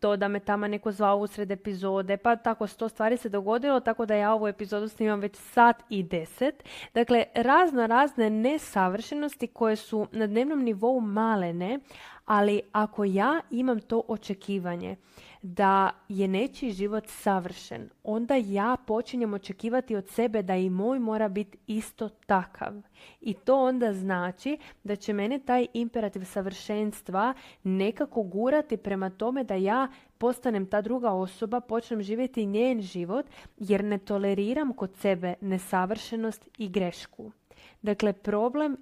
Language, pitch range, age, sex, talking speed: Croatian, 200-235 Hz, 20-39, female, 140 wpm